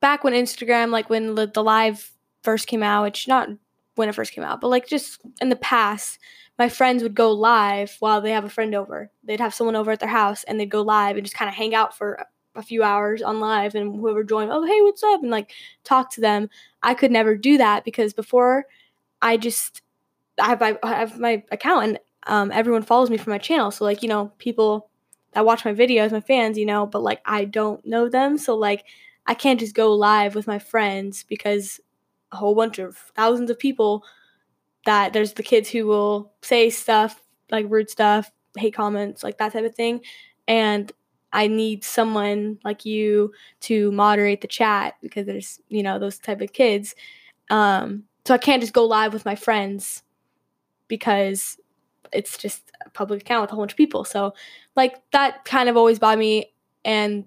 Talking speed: 205 wpm